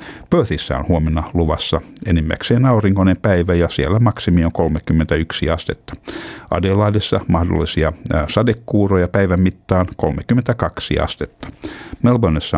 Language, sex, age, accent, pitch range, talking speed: Finnish, male, 60-79, native, 85-105 Hz, 100 wpm